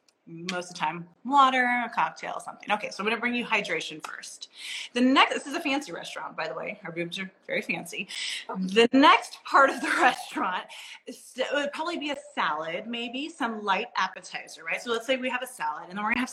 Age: 30-49